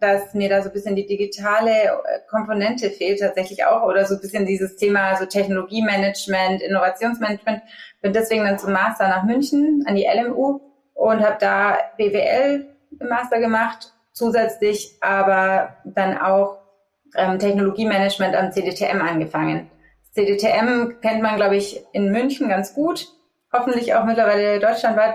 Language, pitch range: German, 195-225 Hz